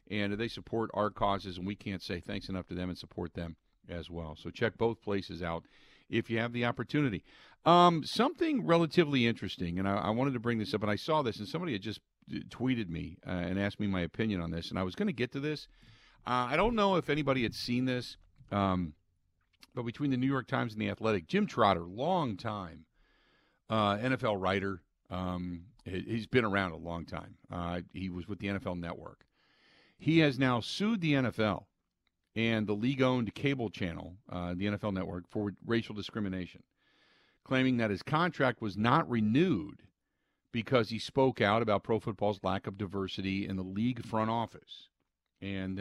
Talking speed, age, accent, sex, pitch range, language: 190 wpm, 50-69, American, male, 95-120 Hz, English